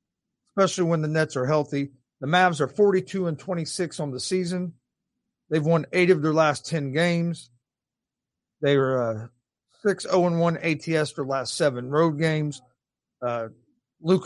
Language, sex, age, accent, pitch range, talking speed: English, male, 40-59, American, 140-175 Hz, 145 wpm